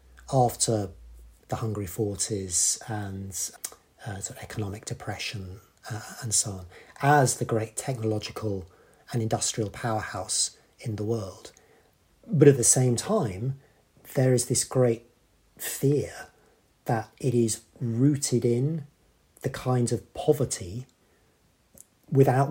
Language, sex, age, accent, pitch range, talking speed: English, male, 40-59, British, 110-135 Hz, 115 wpm